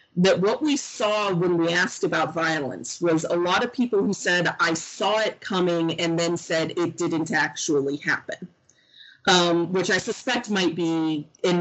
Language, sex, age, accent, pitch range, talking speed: English, female, 30-49, American, 160-180 Hz, 175 wpm